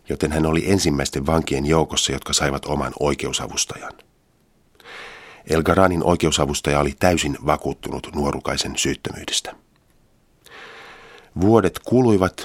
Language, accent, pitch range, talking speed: Finnish, native, 70-85 Hz, 90 wpm